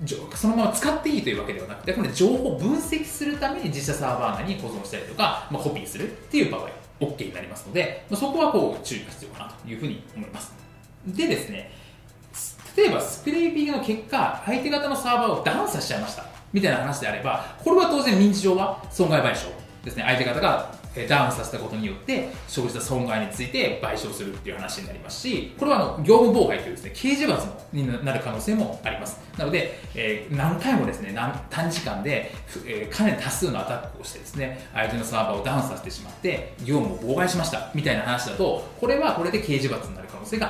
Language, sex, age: Japanese, male, 20-39